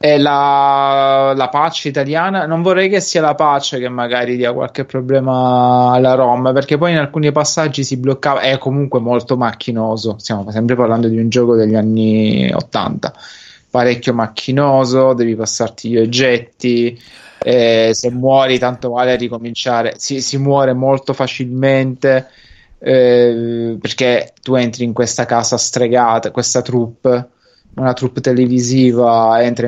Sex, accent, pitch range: male, native, 120-135 Hz